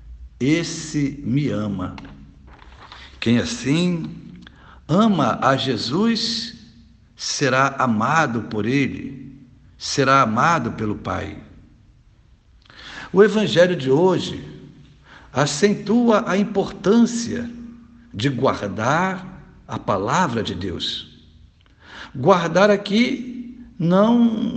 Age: 60-79